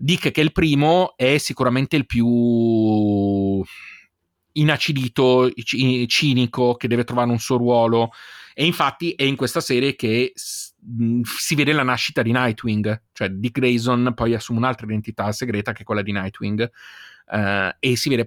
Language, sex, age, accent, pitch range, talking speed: Italian, male, 30-49, native, 115-140 Hz, 155 wpm